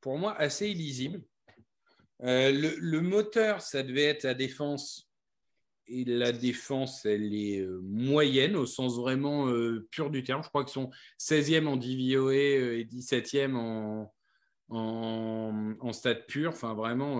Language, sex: French, male